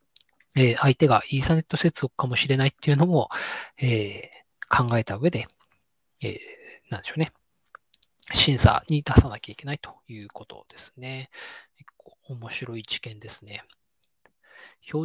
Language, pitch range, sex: Japanese, 115-140 Hz, male